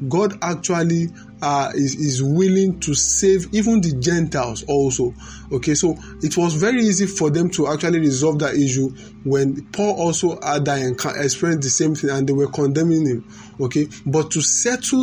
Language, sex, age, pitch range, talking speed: English, male, 20-39, 140-180 Hz, 175 wpm